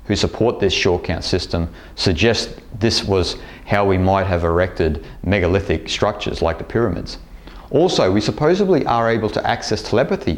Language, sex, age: English, male, 30-49